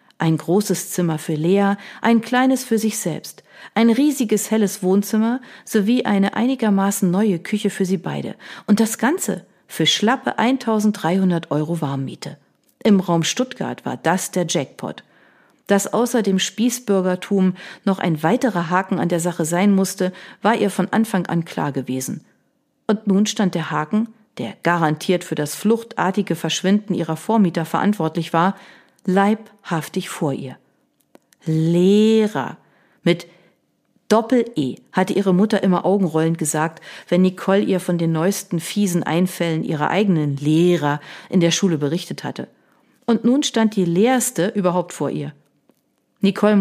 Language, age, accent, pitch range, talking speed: German, 40-59, German, 165-210 Hz, 140 wpm